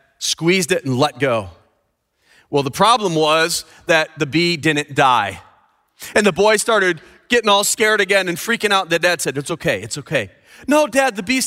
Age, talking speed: 30-49, 190 wpm